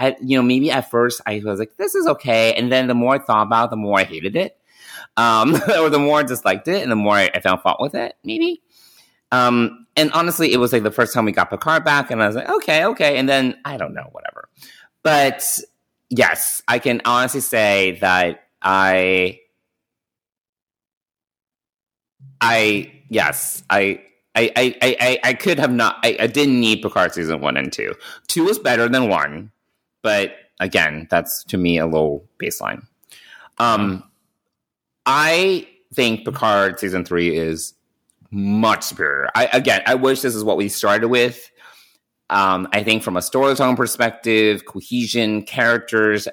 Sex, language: male, English